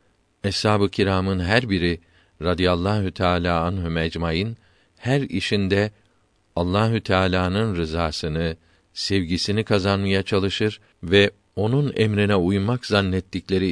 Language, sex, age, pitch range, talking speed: Turkish, male, 50-69, 85-105 Hz, 90 wpm